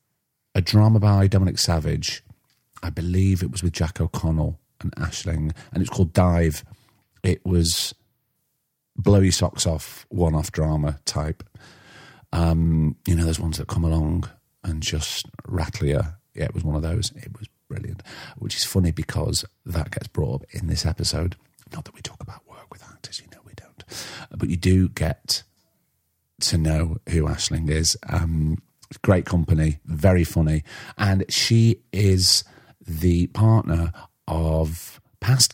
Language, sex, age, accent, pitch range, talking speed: English, male, 40-59, British, 80-100 Hz, 155 wpm